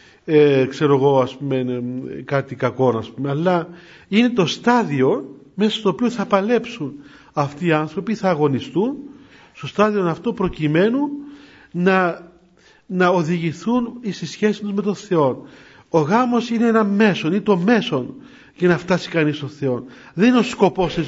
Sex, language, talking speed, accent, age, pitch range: male, Greek, 165 wpm, native, 40-59, 150-215 Hz